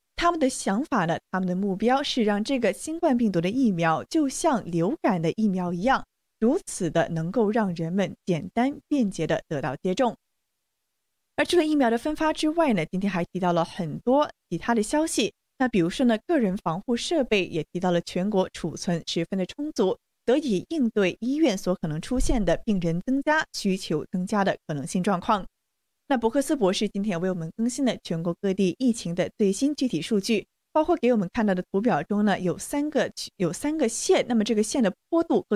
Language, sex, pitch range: Chinese, female, 180-275 Hz